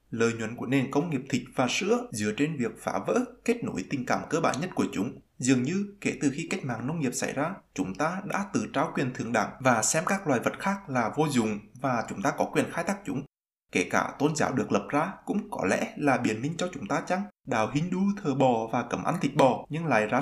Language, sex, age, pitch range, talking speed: Vietnamese, male, 20-39, 125-185 Hz, 260 wpm